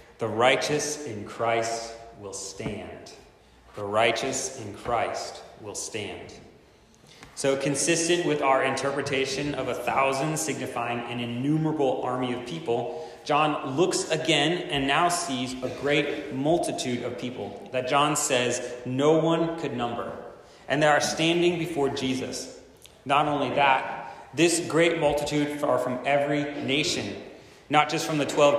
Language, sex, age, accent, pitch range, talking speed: English, male, 30-49, American, 125-150 Hz, 135 wpm